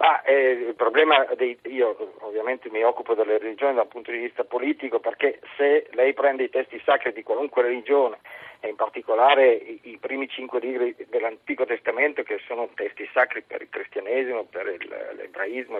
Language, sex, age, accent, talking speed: Italian, male, 50-69, native, 175 wpm